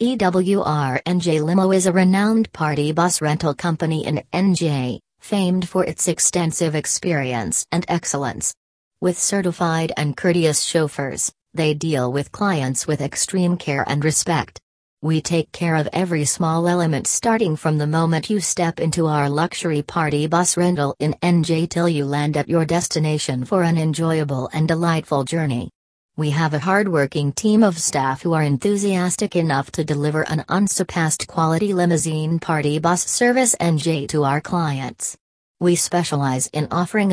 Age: 40-59